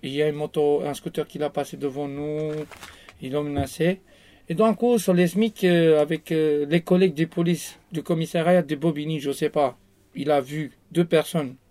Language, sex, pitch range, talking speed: French, male, 130-175 Hz, 215 wpm